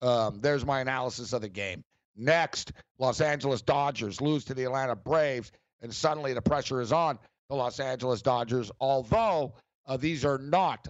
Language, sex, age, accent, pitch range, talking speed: English, male, 50-69, American, 125-160 Hz, 170 wpm